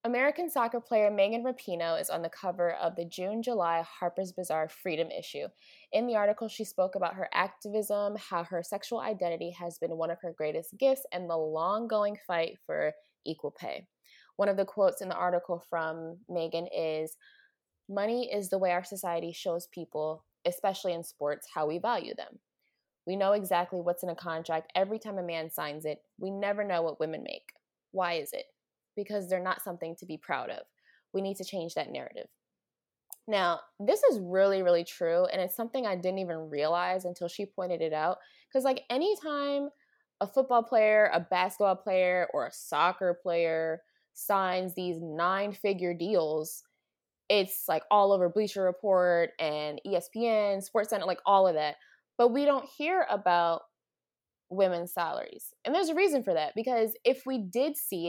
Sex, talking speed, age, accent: female, 175 wpm, 20-39, American